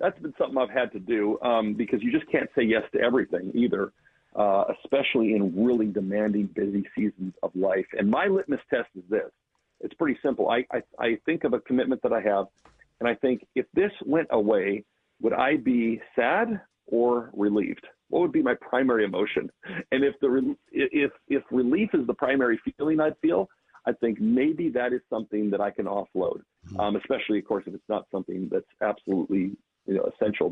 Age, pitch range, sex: 50-69, 105-155 Hz, male